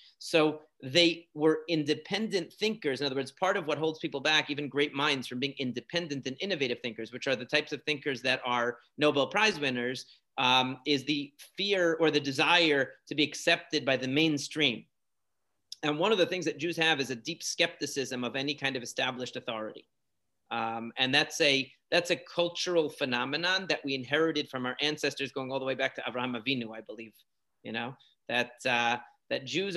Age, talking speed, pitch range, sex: 30-49, 190 wpm, 130-170 Hz, male